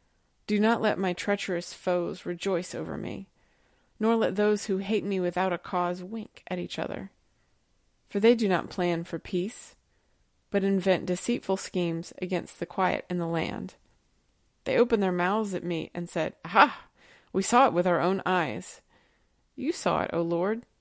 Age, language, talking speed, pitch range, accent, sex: 30-49, English, 175 wpm, 180-220 Hz, American, female